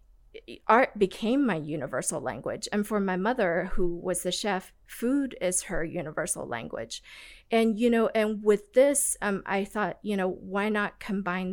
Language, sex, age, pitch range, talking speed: English, female, 40-59, 180-210 Hz, 165 wpm